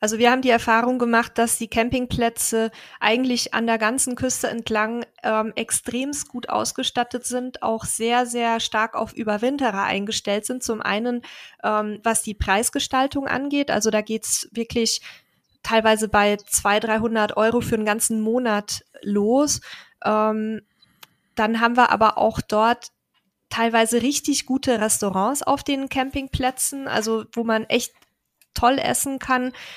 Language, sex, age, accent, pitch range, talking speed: German, female, 20-39, German, 215-245 Hz, 145 wpm